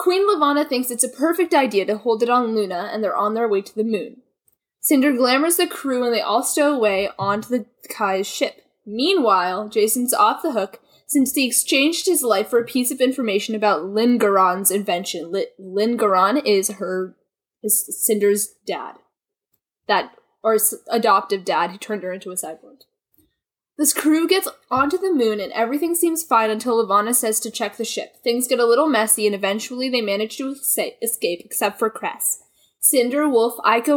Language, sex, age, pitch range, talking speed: English, female, 10-29, 210-280 Hz, 180 wpm